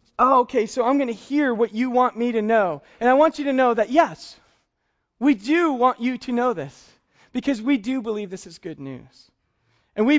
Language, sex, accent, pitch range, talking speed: English, male, American, 185-260 Hz, 220 wpm